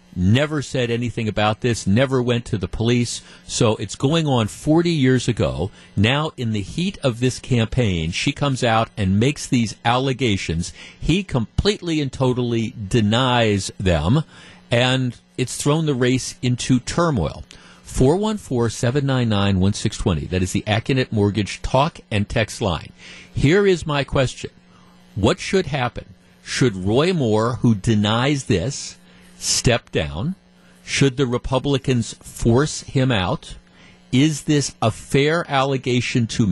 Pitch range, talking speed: 105-135 Hz, 135 wpm